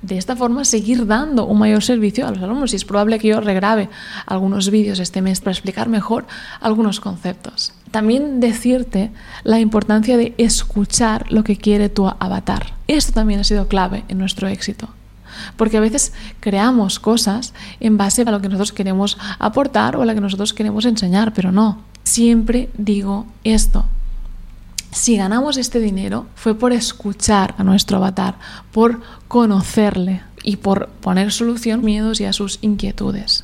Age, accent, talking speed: 20-39, Spanish, 165 wpm